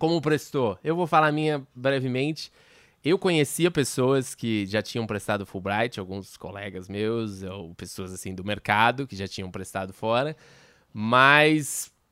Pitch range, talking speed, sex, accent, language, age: 110-150 Hz, 150 wpm, male, Brazilian, Portuguese, 20-39